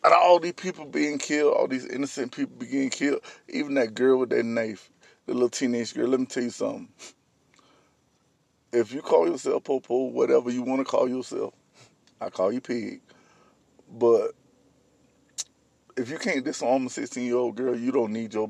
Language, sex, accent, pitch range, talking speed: English, male, American, 125-170 Hz, 180 wpm